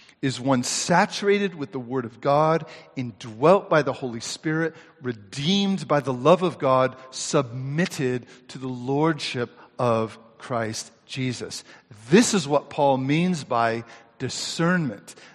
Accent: American